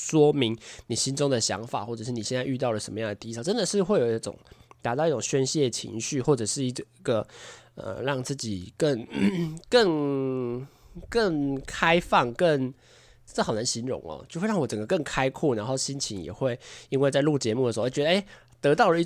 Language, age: Chinese, 20-39